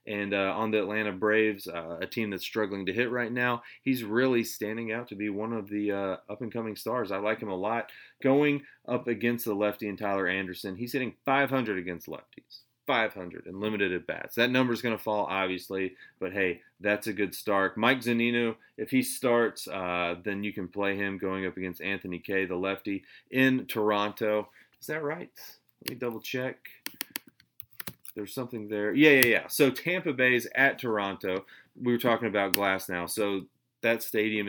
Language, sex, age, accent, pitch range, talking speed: English, male, 30-49, American, 100-120 Hz, 195 wpm